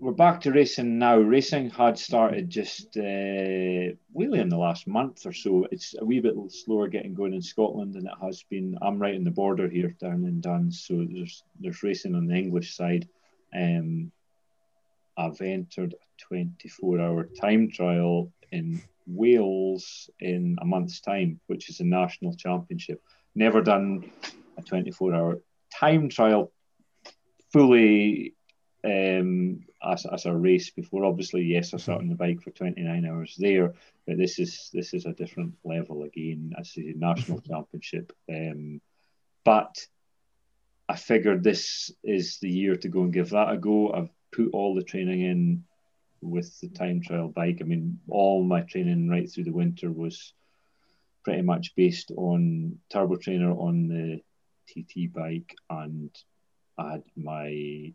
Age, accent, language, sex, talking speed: 40-59, British, English, male, 155 wpm